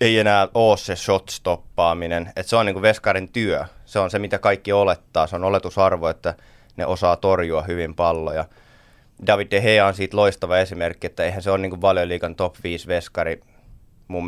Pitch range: 90-105 Hz